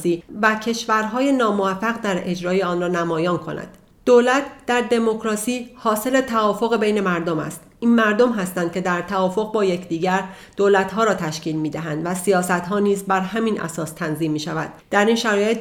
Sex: female